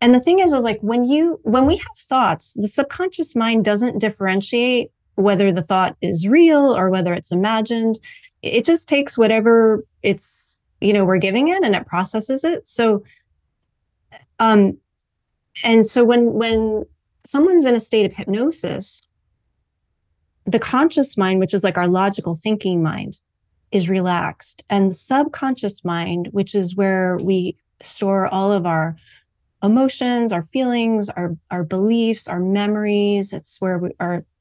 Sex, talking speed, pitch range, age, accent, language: female, 150 wpm, 185-230 Hz, 30-49, American, English